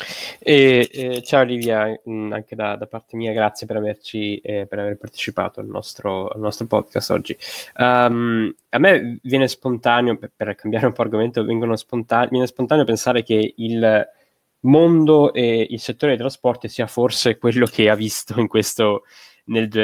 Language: Italian